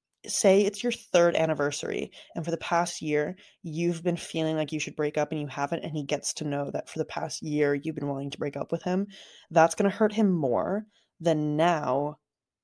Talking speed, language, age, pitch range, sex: 225 wpm, English, 20-39, 150-195 Hz, female